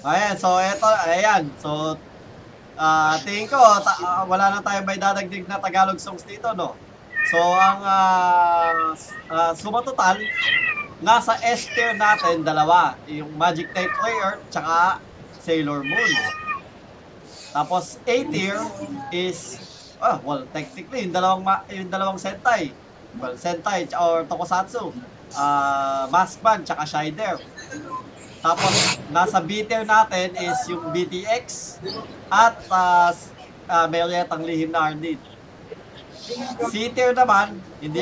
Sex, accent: male, native